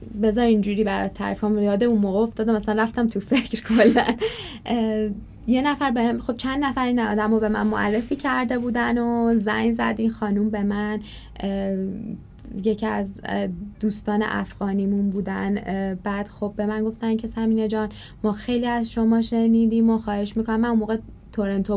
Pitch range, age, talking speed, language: 205-235 Hz, 10-29, 160 wpm, Persian